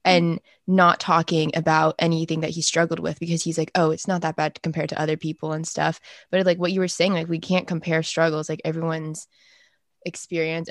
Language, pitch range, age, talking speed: English, 160-170 Hz, 20-39, 205 wpm